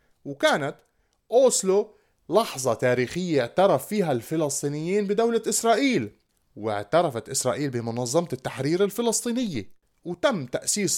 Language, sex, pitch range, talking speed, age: Arabic, male, 120-175 Hz, 85 wpm, 30-49